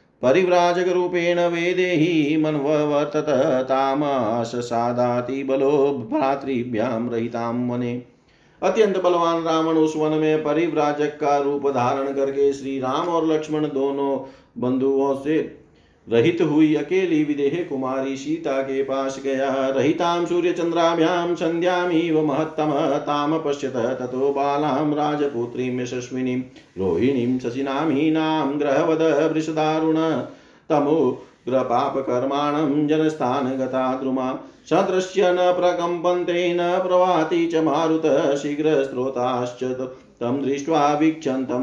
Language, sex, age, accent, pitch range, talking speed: Hindi, male, 50-69, native, 130-160 Hz, 90 wpm